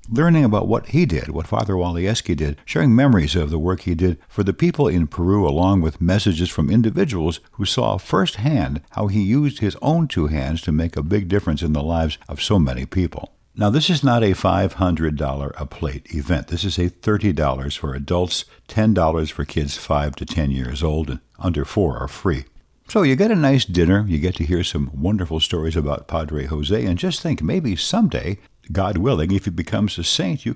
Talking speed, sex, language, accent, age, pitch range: 205 wpm, male, English, American, 60-79, 75-110 Hz